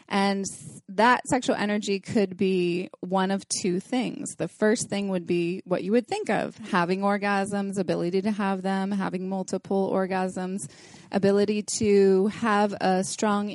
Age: 20-39